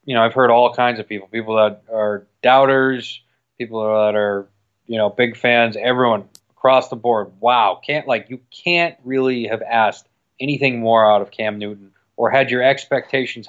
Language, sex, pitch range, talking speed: English, male, 110-130 Hz, 180 wpm